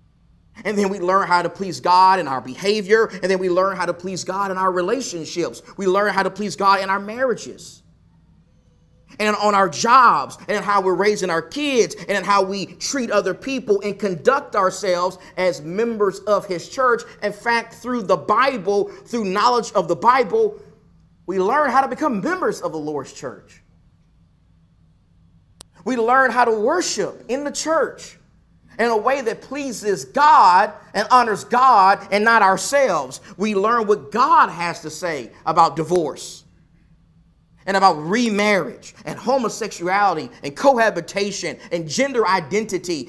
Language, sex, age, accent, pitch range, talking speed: English, male, 30-49, American, 170-220 Hz, 160 wpm